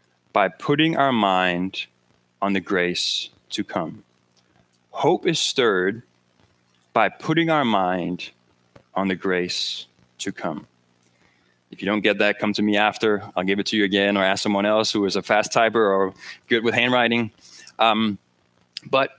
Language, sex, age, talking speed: English, male, 20-39, 160 wpm